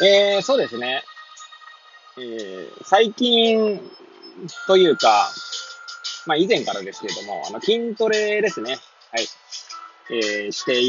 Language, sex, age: Japanese, male, 20-39